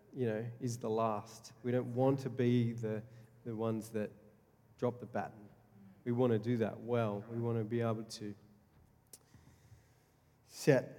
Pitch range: 115-145 Hz